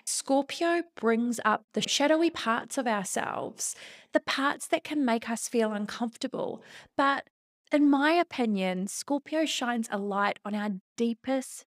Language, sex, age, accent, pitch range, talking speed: English, female, 20-39, Australian, 210-280 Hz, 140 wpm